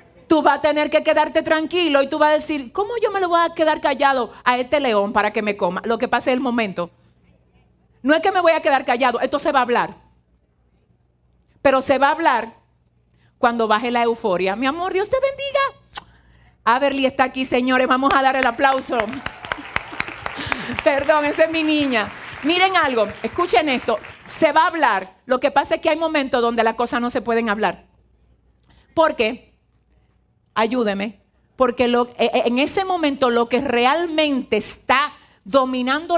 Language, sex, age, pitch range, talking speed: Spanish, female, 50-69, 220-305 Hz, 180 wpm